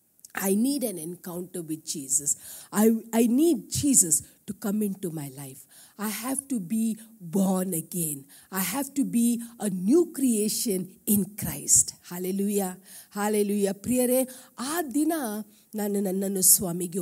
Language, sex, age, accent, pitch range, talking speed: Kannada, female, 50-69, native, 190-285 Hz, 135 wpm